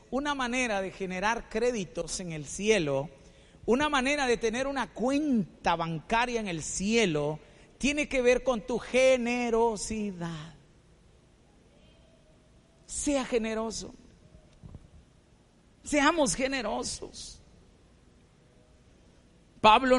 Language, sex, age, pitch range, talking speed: Spanish, male, 50-69, 205-275 Hz, 85 wpm